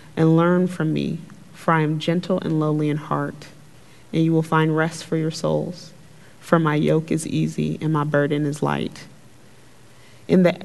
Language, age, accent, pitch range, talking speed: English, 30-49, American, 150-170 Hz, 180 wpm